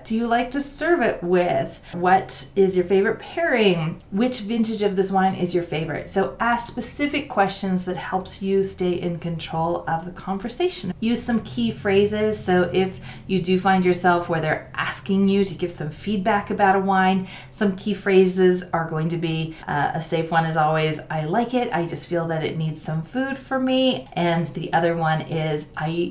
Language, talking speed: English, 200 wpm